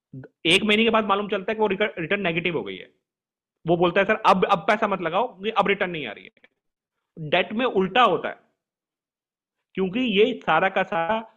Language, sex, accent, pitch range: English, male, Indian, 160-200 Hz